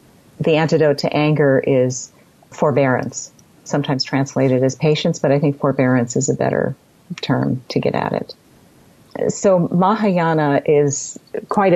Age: 40-59